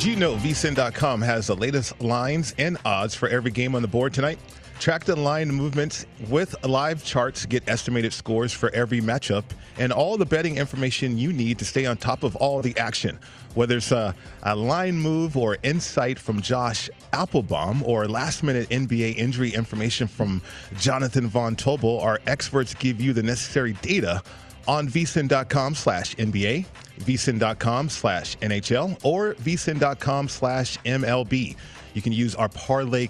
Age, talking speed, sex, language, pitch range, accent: 30-49, 160 wpm, male, English, 115-140 Hz, American